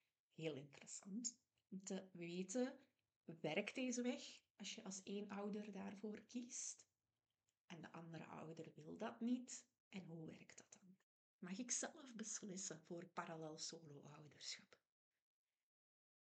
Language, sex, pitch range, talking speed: Dutch, female, 165-220 Hz, 120 wpm